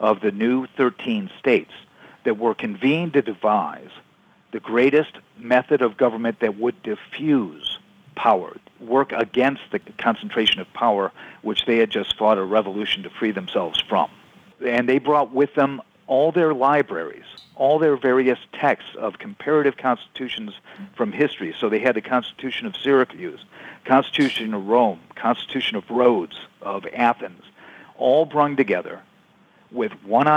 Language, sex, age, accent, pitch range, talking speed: English, male, 50-69, American, 120-150 Hz, 145 wpm